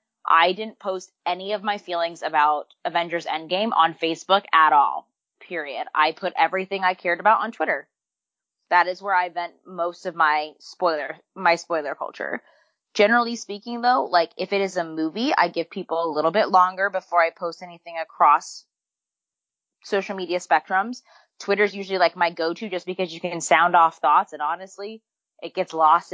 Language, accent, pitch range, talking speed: English, American, 165-210 Hz, 175 wpm